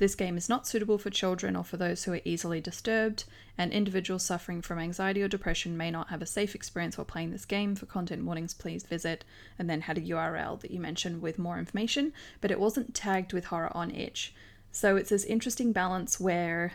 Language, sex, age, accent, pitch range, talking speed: English, female, 20-39, Australian, 175-210 Hz, 220 wpm